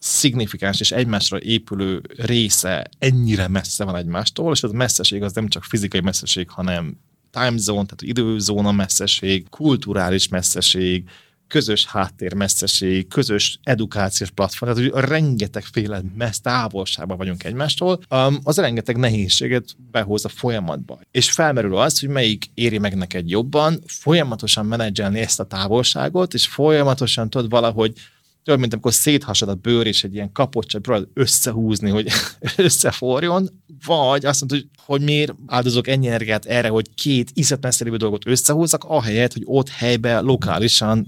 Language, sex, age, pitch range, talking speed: Hungarian, male, 20-39, 100-135 Hz, 140 wpm